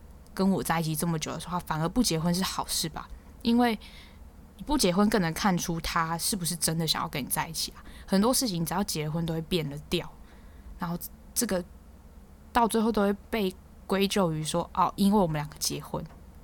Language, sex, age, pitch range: Chinese, female, 10-29, 160-195 Hz